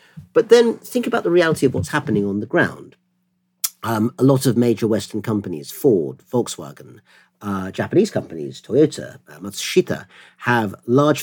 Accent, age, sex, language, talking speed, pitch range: British, 50-69, male, English, 155 wpm, 95-120 Hz